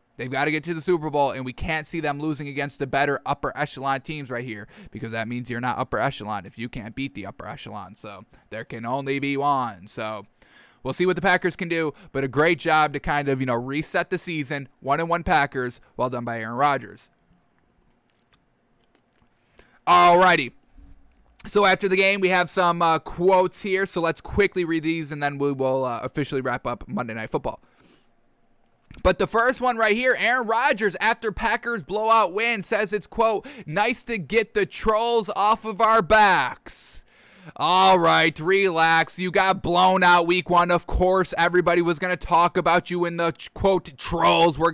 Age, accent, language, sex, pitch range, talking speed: 20-39, American, English, male, 140-210 Hz, 195 wpm